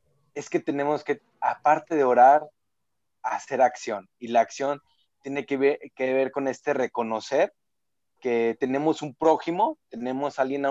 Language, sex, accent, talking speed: Spanish, male, Mexican, 155 wpm